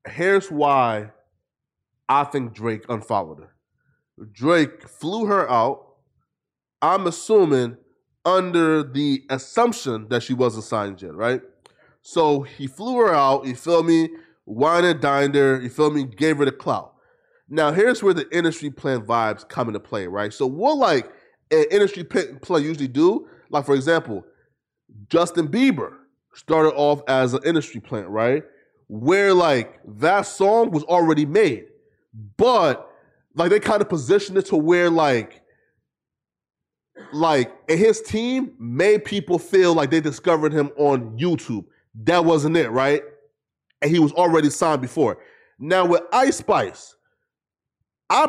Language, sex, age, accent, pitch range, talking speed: English, male, 20-39, American, 135-185 Hz, 145 wpm